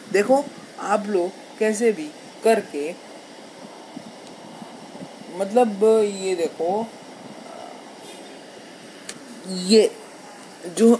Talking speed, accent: 60 wpm, native